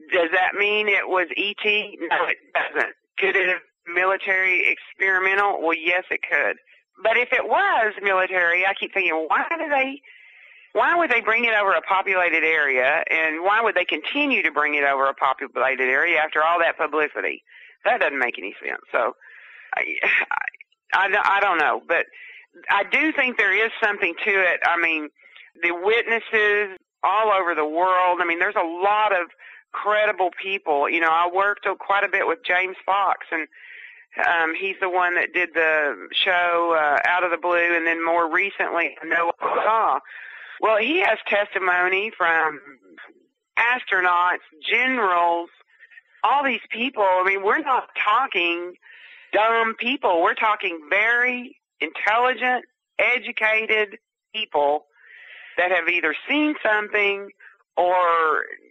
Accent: American